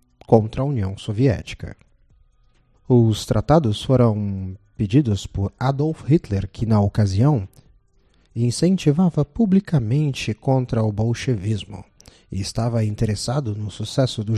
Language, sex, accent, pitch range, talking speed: Portuguese, male, Brazilian, 105-140 Hz, 105 wpm